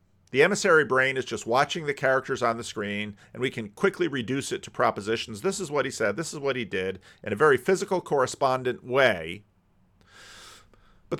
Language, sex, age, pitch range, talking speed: English, male, 40-59, 100-145 Hz, 195 wpm